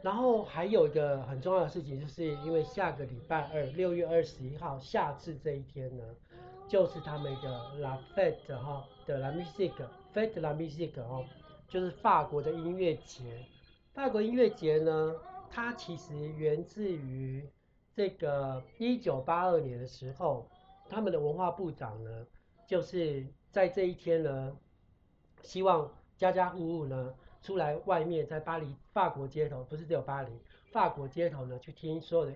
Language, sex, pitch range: Chinese, male, 135-180 Hz